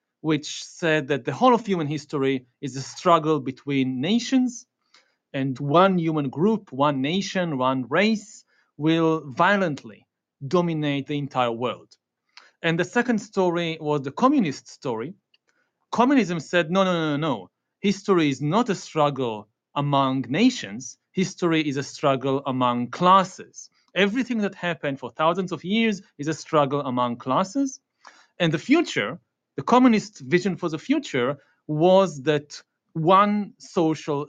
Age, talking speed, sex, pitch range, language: 40-59, 140 wpm, male, 145-200 Hz, English